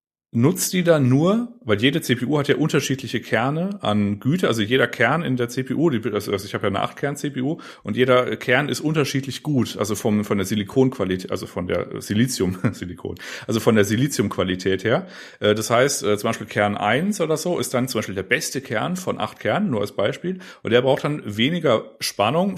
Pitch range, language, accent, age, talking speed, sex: 110-150 Hz, German, German, 40-59, 190 wpm, male